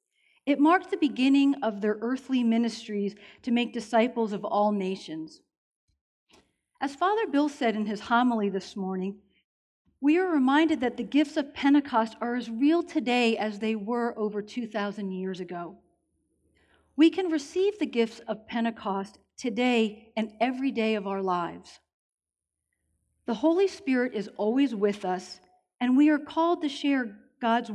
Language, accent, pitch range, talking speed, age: English, American, 205-265 Hz, 150 wpm, 40-59